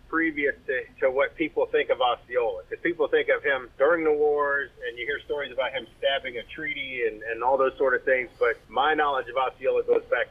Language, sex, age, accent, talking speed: English, male, 40-59, American, 225 wpm